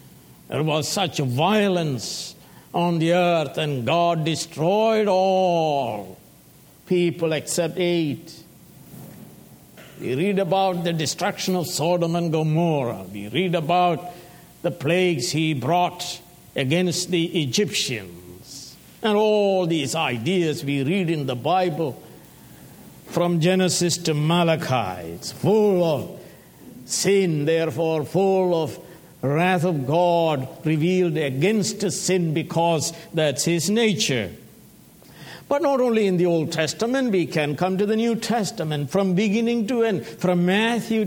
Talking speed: 120 wpm